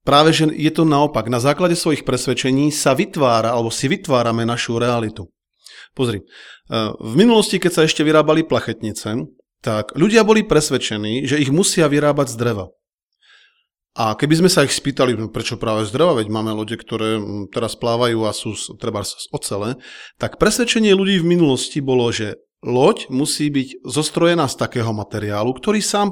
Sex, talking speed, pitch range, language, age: male, 165 wpm, 115-165 Hz, Slovak, 40-59